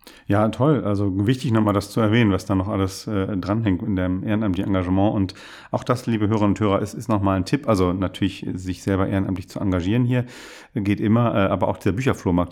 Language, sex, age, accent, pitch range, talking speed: German, male, 40-59, German, 95-120 Hz, 215 wpm